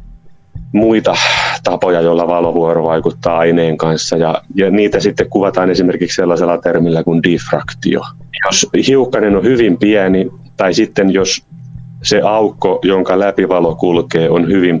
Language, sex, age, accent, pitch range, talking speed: Finnish, male, 30-49, native, 85-100 Hz, 135 wpm